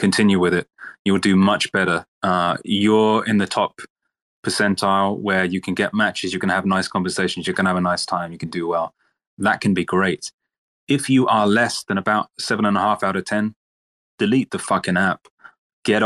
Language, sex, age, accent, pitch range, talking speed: English, male, 20-39, British, 95-105 Hz, 210 wpm